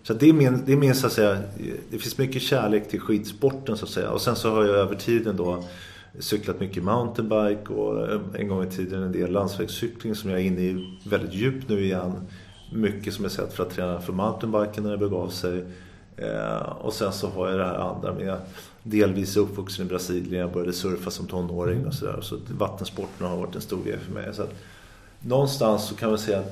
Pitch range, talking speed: 95-110 Hz, 215 wpm